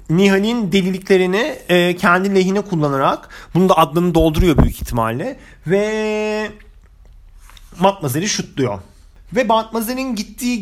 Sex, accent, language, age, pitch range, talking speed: male, native, Turkish, 40-59, 165-225 Hz, 100 wpm